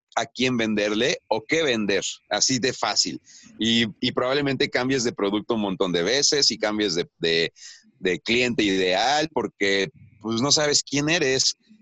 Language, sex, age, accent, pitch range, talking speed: Spanish, male, 40-59, Mexican, 115-150 Hz, 160 wpm